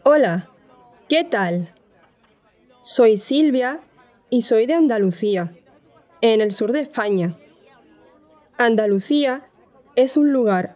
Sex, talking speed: female, 100 wpm